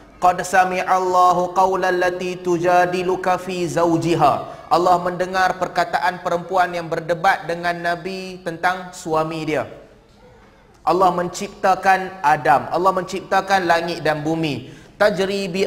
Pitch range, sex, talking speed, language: 160-195 Hz, male, 105 wpm, Malay